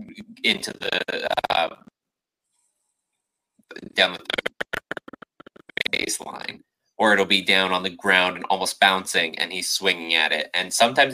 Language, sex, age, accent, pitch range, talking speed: English, male, 30-49, American, 85-105 Hz, 130 wpm